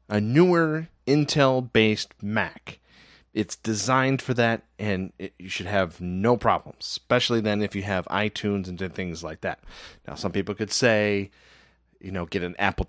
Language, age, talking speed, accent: English, 30-49, 160 wpm, American